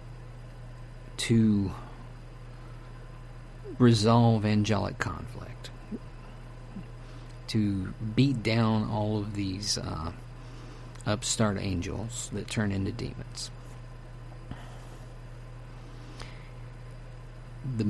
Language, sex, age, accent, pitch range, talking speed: English, male, 50-69, American, 120-125 Hz, 60 wpm